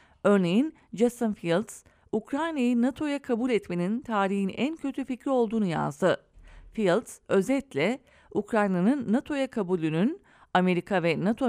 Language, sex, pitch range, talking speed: English, female, 185-255 Hz, 110 wpm